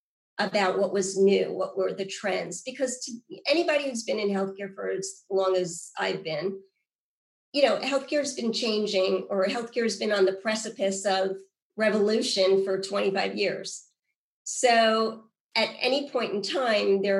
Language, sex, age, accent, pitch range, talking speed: English, female, 40-59, American, 190-230 Hz, 160 wpm